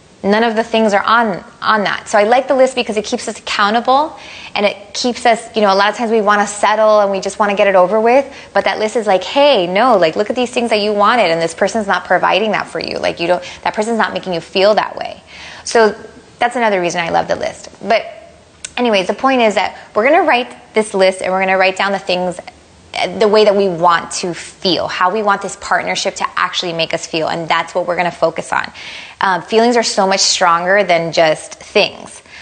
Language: English